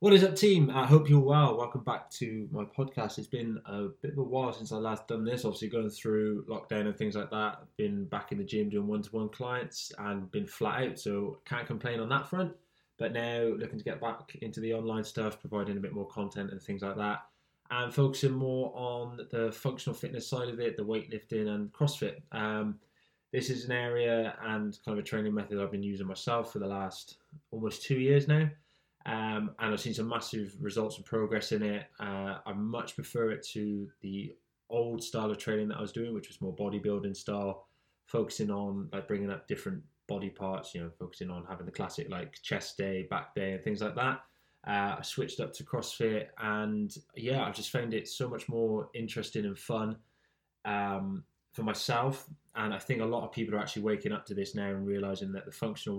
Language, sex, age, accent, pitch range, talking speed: English, male, 10-29, British, 100-125 Hz, 220 wpm